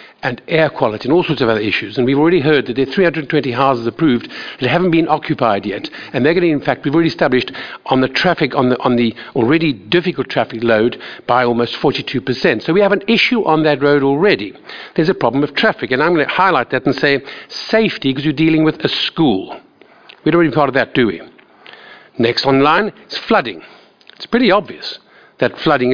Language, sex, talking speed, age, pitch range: English, male, 220 wpm, 50-69, 135-205 Hz